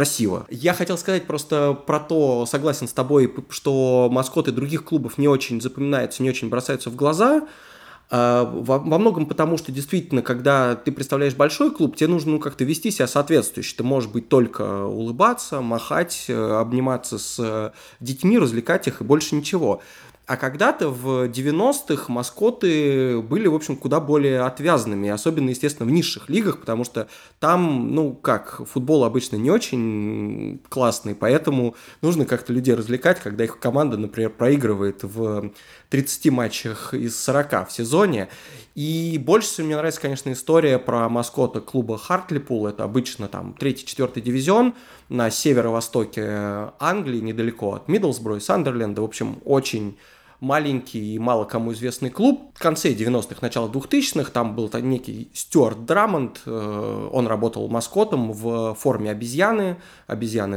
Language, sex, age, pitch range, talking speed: Russian, male, 20-39, 115-155 Hz, 140 wpm